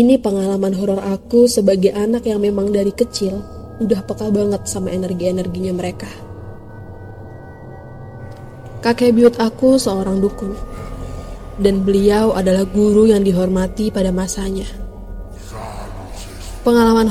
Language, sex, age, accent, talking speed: Indonesian, female, 20-39, native, 105 wpm